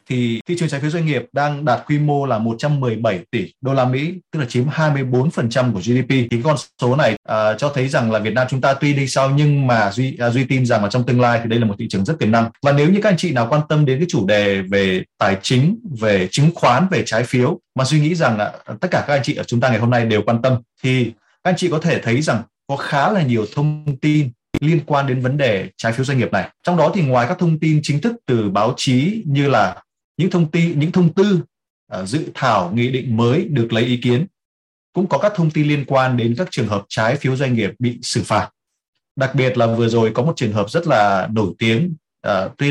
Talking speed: 265 wpm